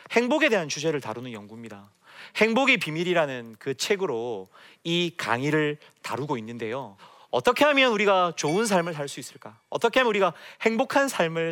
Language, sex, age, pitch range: Korean, male, 30-49, 130-195 Hz